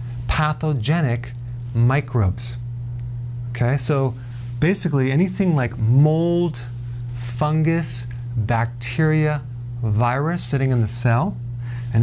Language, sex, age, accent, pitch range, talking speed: English, male, 40-59, American, 120-145 Hz, 80 wpm